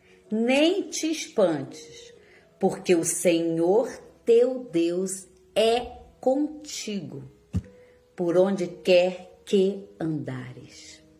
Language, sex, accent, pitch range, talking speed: Portuguese, female, Brazilian, 160-245 Hz, 80 wpm